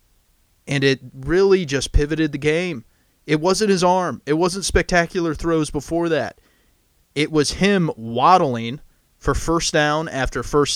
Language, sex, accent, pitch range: English, male, American, 125-160 Hz